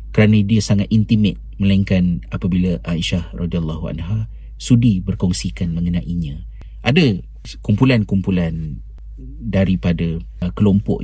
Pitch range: 85-100 Hz